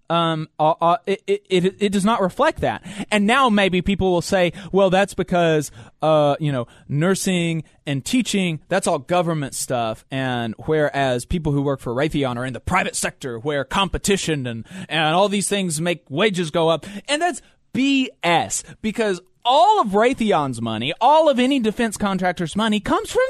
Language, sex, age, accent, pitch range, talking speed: English, male, 20-39, American, 160-225 Hz, 180 wpm